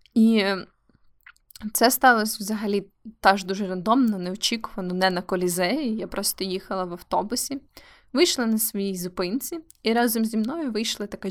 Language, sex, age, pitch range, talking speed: Ukrainian, female, 20-39, 180-235 Hz, 140 wpm